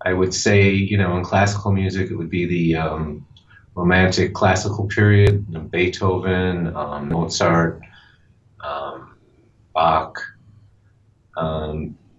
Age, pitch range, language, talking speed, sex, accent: 30-49, 85-105 Hz, English, 110 wpm, male, American